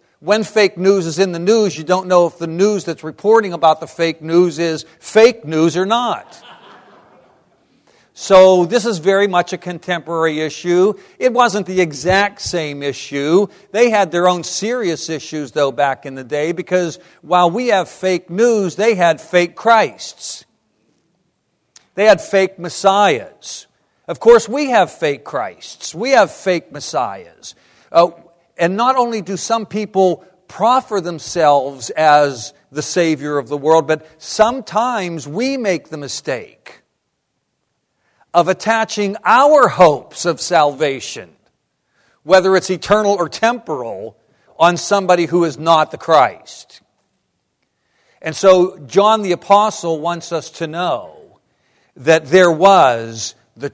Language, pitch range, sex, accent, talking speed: English, 160-205 Hz, male, American, 140 wpm